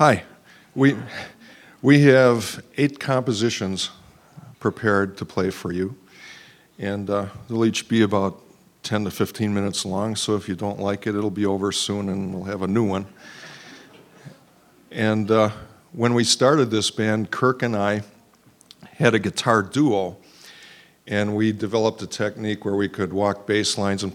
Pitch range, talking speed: 95-110 Hz, 160 wpm